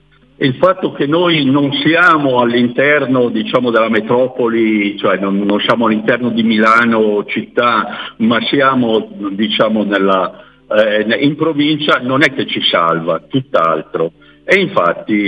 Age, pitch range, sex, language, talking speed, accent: 60-79, 110-140 Hz, male, Italian, 130 wpm, native